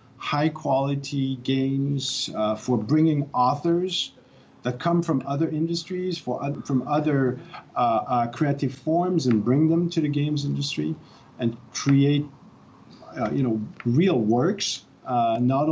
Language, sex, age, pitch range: English, male, 50-69, 120-155 Hz